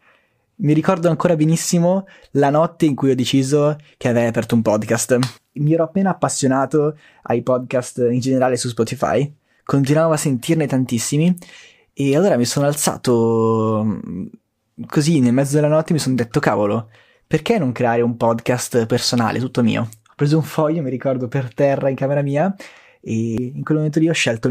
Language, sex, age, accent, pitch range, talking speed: Italian, male, 20-39, native, 120-155 Hz, 170 wpm